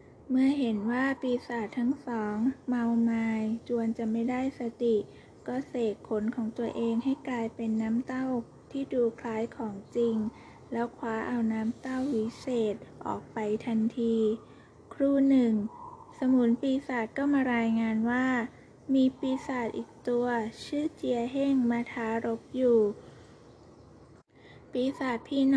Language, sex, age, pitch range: Thai, female, 20-39, 225-260 Hz